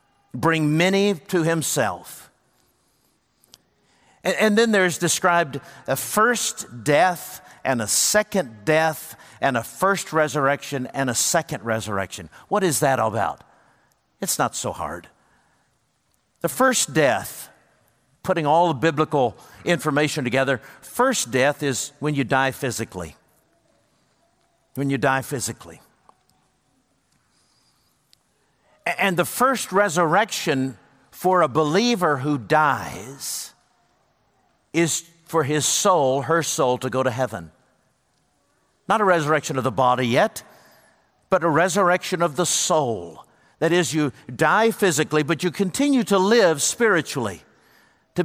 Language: English